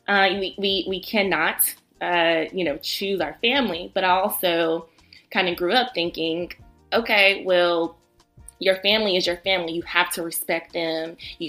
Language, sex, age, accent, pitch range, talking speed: English, female, 20-39, American, 165-190 Hz, 165 wpm